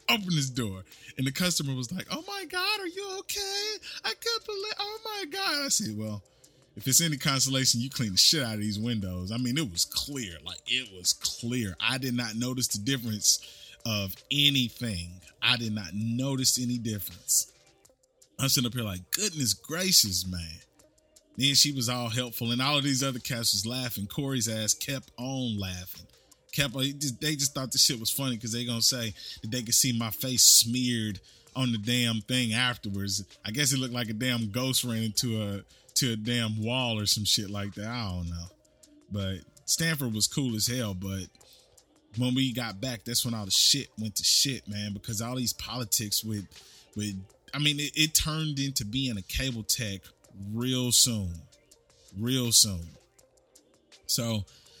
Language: English